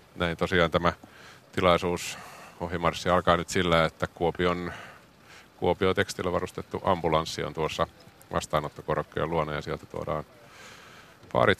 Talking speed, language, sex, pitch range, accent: 115 wpm, Finnish, male, 80-95 Hz, native